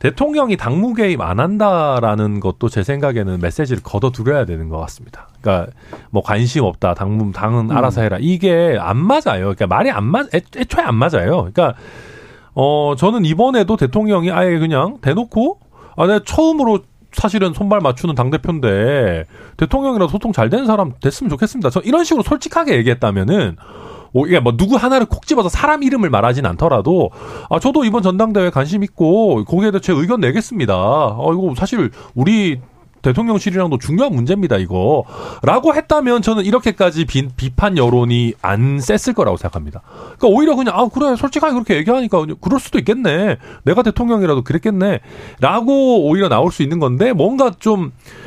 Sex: male